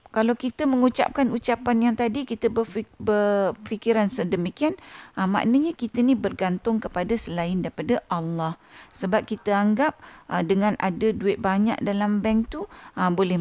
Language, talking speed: Malay, 125 wpm